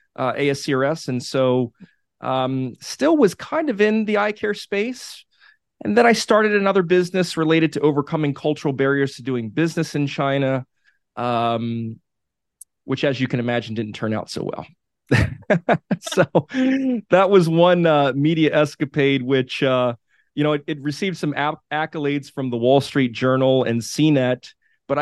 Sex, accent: male, American